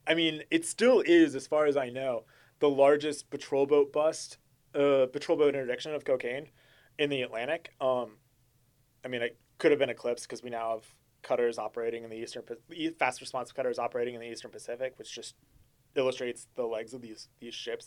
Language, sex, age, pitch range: English, male, 20-39, 125-150 Hz